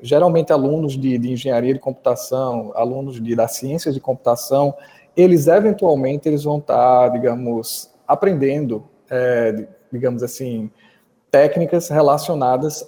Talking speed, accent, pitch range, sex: 115 wpm, Brazilian, 130-175 Hz, male